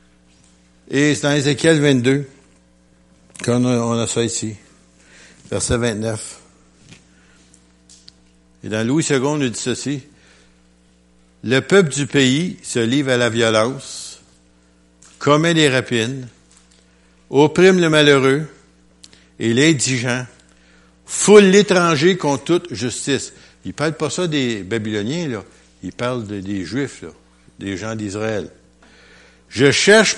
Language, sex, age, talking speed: French, male, 60-79, 120 wpm